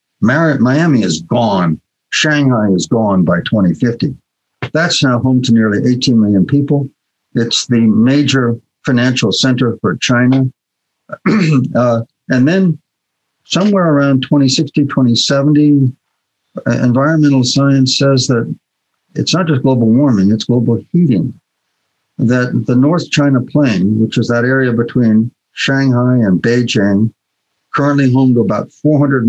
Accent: American